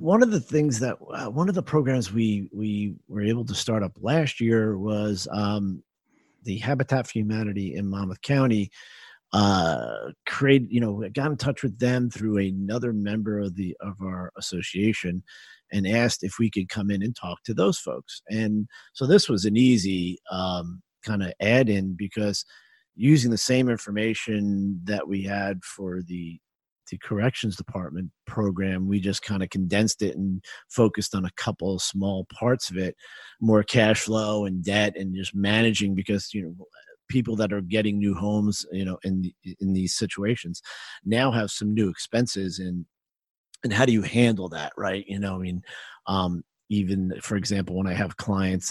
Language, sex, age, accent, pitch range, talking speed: English, male, 40-59, American, 95-115 Hz, 180 wpm